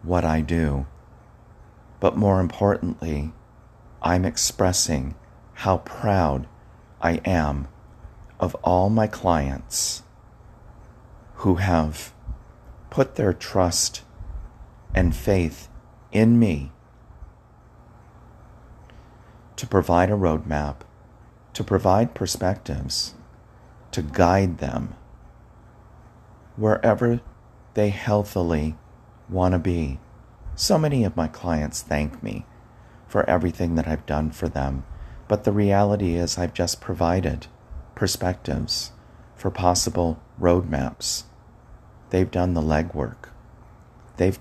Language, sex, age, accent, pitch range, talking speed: English, male, 40-59, American, 80-105 Hz, 95 wpm